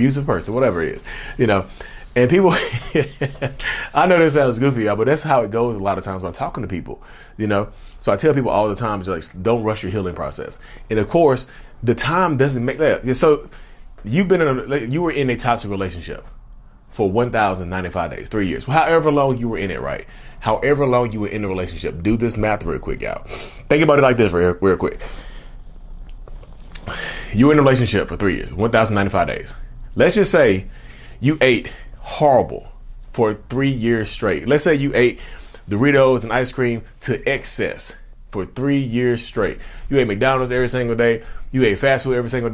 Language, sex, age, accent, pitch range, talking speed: English, male, 30-49, American, 105-140 Hz, 200 wpm